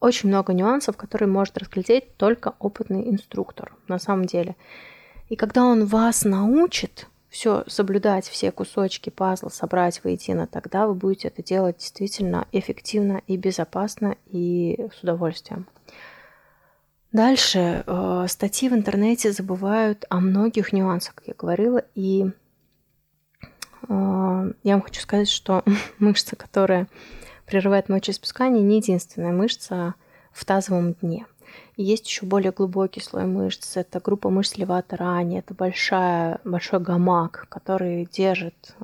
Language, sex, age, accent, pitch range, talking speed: Russian, female, 20-39, native, 180-205 Hz, 125 wpm